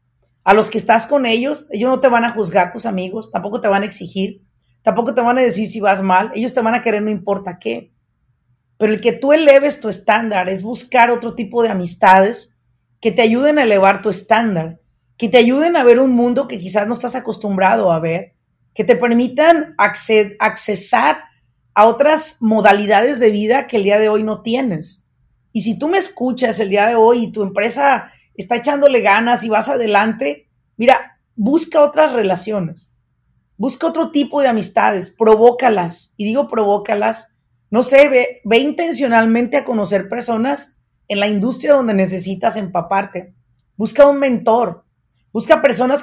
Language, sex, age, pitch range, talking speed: Spanish, female, 40-59, 195-250 Hz, 175 wpm